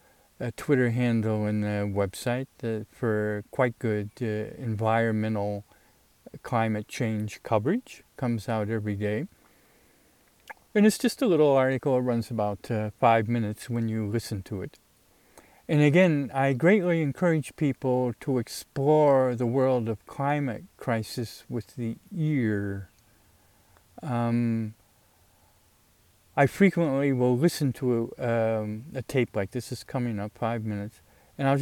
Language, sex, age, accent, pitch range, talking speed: English, male, 50-69, American, 105-130 Hz, 125 wpm